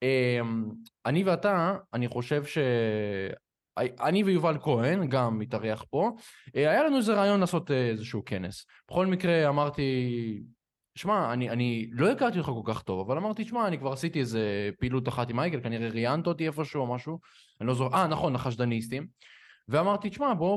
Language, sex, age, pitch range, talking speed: Hebrew, male, 20-39, 115-165 Hz, 160 wpm